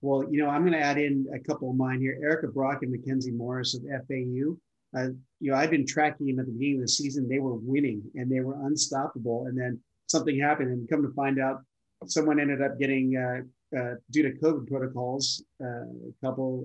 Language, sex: English, male